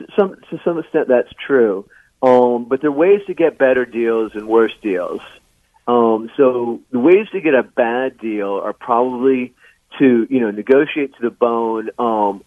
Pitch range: 105-125 Hz